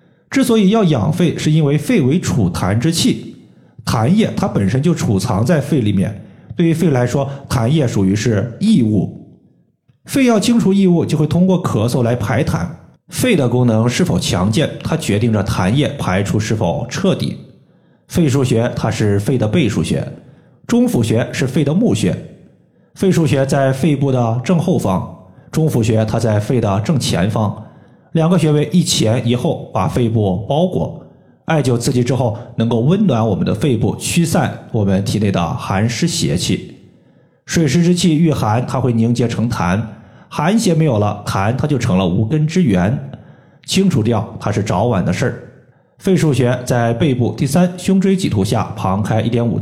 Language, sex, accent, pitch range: Chinese, male, native, 115-165 Hz